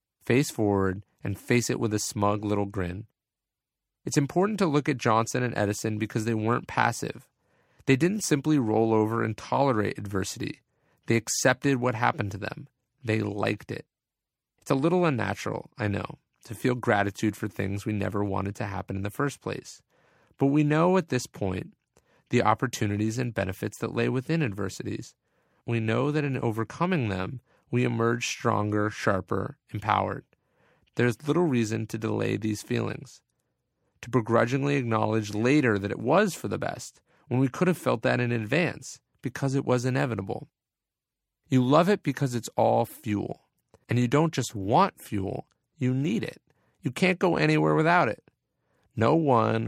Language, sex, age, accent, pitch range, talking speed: English, male, 30-49, American, 105-140 Hz, 165 wpm